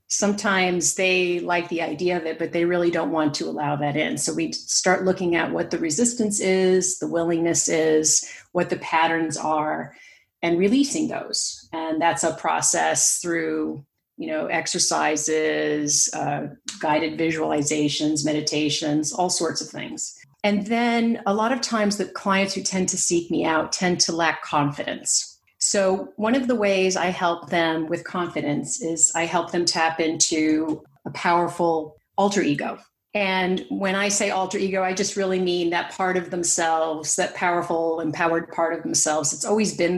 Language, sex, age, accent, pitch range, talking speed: English, female, 40-59, American, 160-190 Hz, 170 wpm